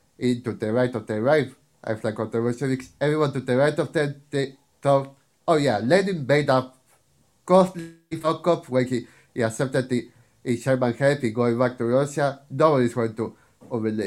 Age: 30-49